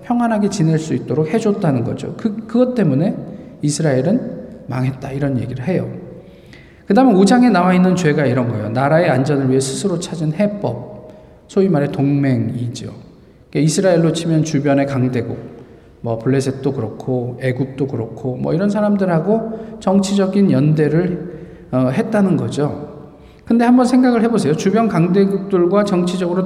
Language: Korean